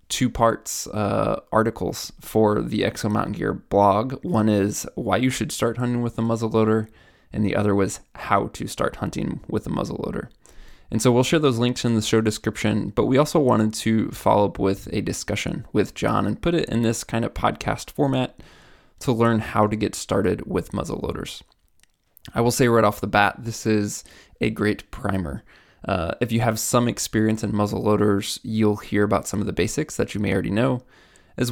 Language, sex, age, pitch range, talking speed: English, male, 20-39, 100-115 Hz, 195 wpm